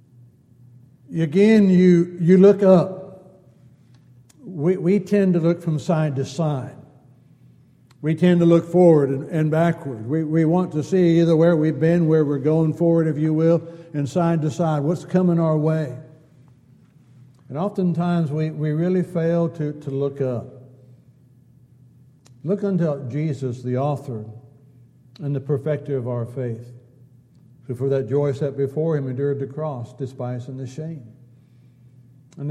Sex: male